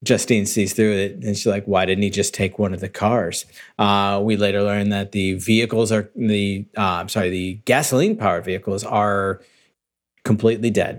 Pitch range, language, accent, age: 100-120 Hz, English, American, 40-59